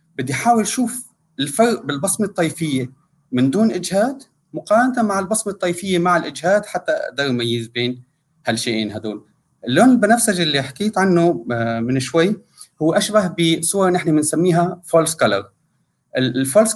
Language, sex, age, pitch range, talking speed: Arabic, male, 30-49, 135-195 Hz, 130 wpm